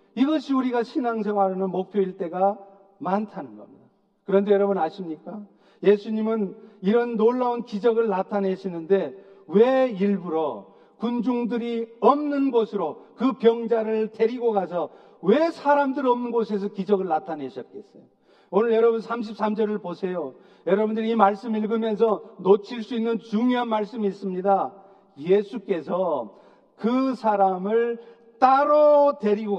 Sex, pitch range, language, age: male, 200-250 Hz, Korean, 40-59